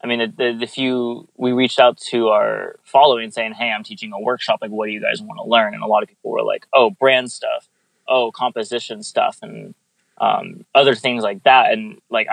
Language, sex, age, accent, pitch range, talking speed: English, male, 20-39, American, 105-130 Hz, 230 wpm